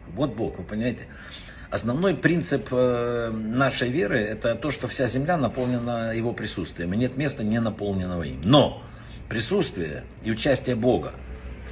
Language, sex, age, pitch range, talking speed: Russian, male, 60-79, 105-130 Hz, 145 wpm